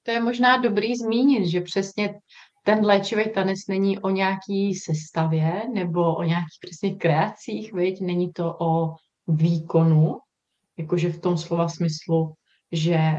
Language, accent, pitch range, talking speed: Czech, native, 170-205 Hz, 135 wpm